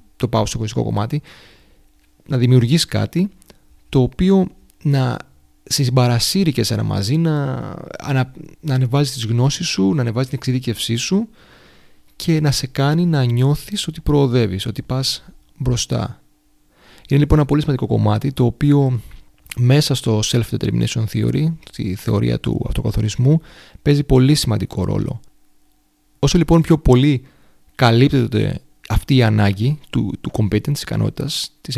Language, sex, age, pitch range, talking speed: Greek, male, 30-49, 115-150 Hz, 135 wpm